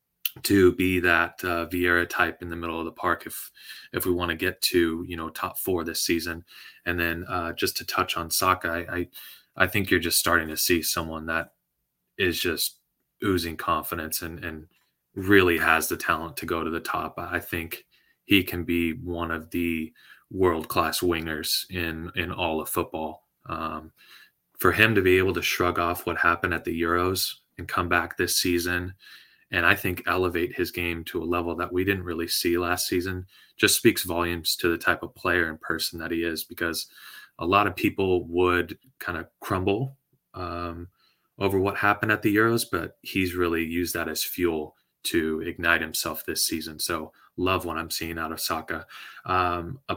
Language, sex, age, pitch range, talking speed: English, male, 20-39, 85-95 Hz, 190 wpm